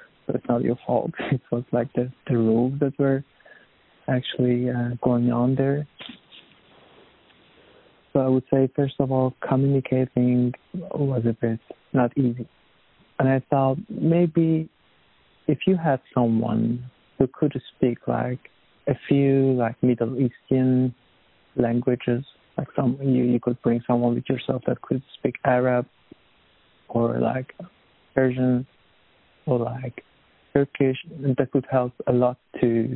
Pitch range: 120-135 Hz